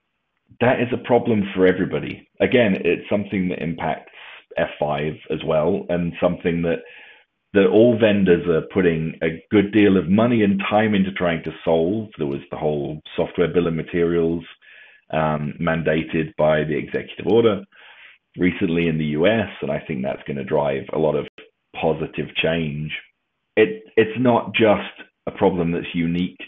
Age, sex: 40-59, male